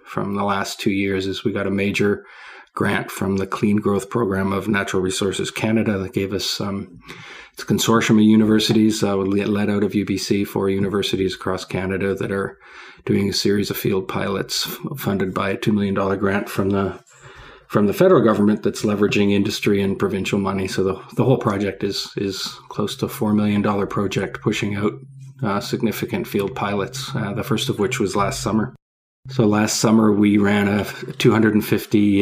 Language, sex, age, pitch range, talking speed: English, male, 40-59, 100-110 Hz, 185 wpm